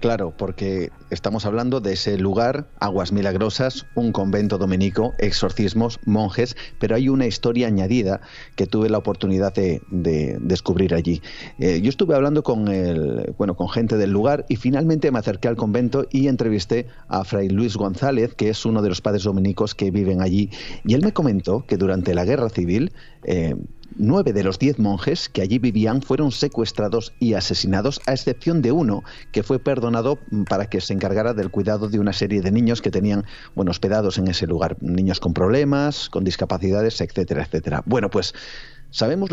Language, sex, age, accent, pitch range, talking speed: Spanish, male, 40-59, Spanish, 95-125 Hz, 175 wpm